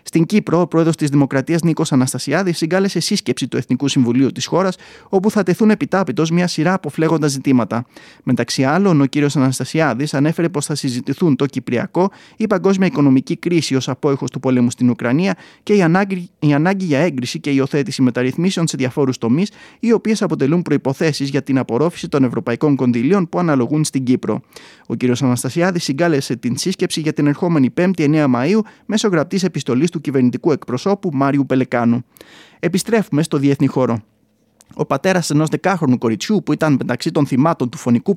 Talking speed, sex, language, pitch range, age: 170 wpm, male, Greek, 130-180 Hz, 30-49